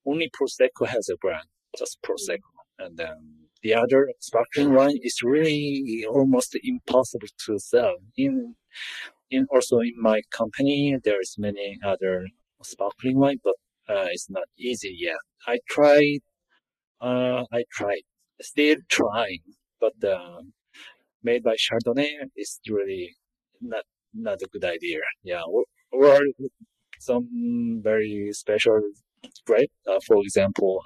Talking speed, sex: 130 wpm, male